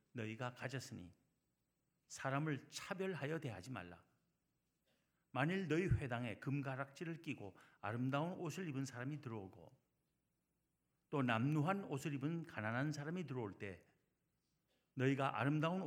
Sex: male